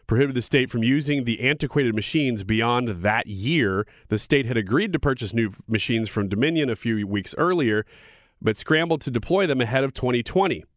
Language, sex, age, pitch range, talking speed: English, male, 30-49, 110-145 Hz, 185 wpm